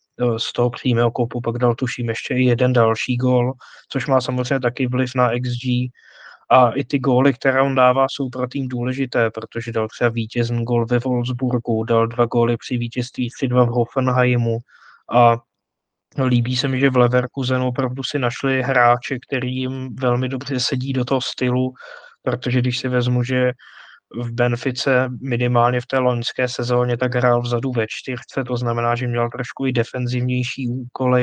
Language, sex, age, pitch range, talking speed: Czech, male, 20-39, 120-130 Hz, 175 wpm